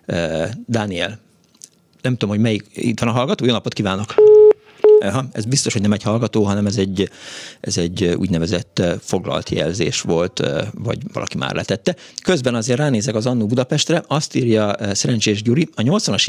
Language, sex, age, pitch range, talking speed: Hungarian, male, 50-69, 100-130 Hz, 165 wpm